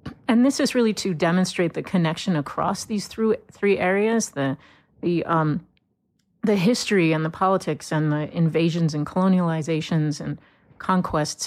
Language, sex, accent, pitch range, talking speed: English, female, American, 155-190 Hz, 145 wpm